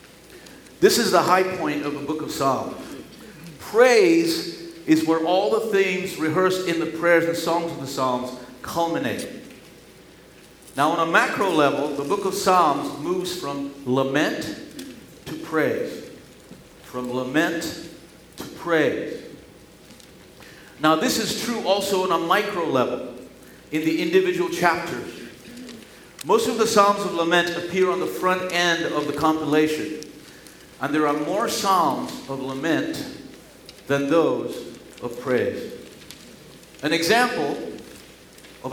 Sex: male